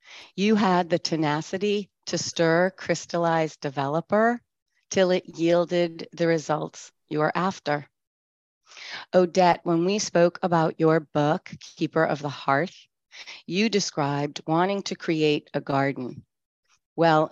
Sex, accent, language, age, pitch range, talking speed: female, American, English, 30-49, 150-185 Hz, 120 wpm